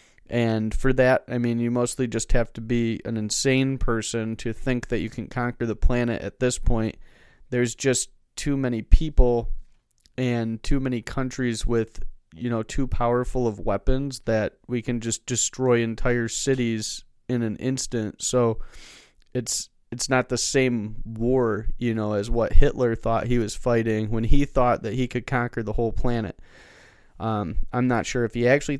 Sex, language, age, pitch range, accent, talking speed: male, English, 30-49, 115-130 Hz, American, 175 wpm